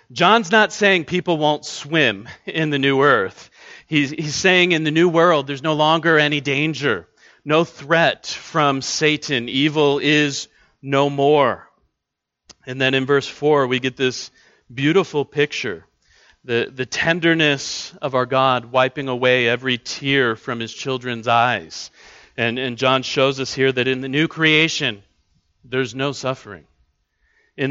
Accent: American